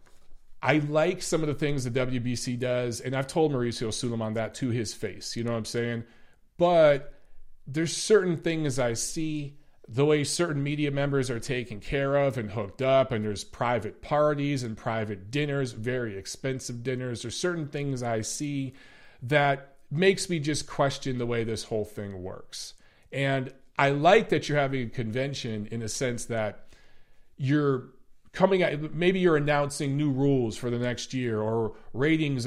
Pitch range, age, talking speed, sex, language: 120-150 Hz, 40-59, 170 wpm, male, English